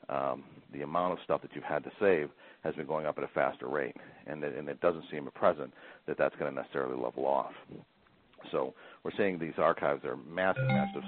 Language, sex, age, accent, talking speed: English, male, 60-79, American, 220 wpm